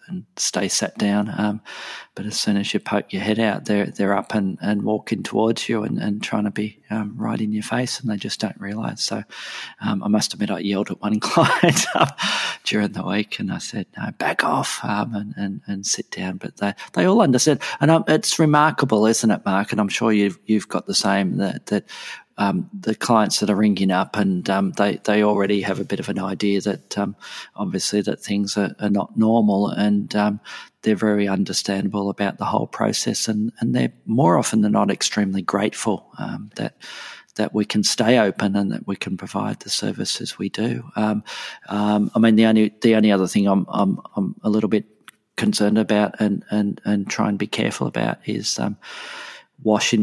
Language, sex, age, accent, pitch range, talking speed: English, male, 40-59, Australian, 100-110 Hz, 210 wpm